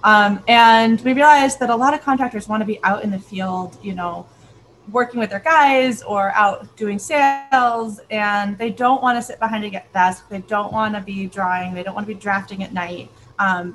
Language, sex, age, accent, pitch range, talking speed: English, female, 20-39, American, 190-225 Hz, 220 wpm